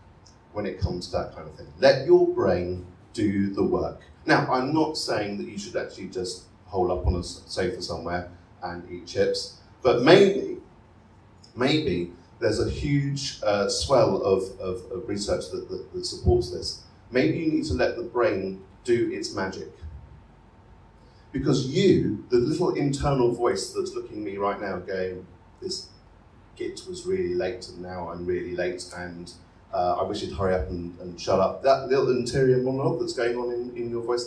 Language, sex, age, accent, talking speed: English, male, 40-59, British, 180 wpm